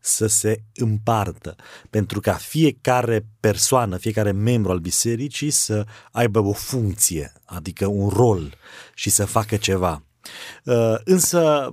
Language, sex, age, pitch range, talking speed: Romanian, male, 30-49, 100-130 Hz, 120 wpm